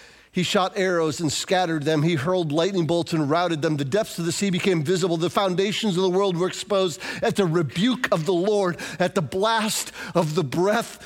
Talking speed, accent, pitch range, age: 210 wpm, American, 165-215 Hz, 50-69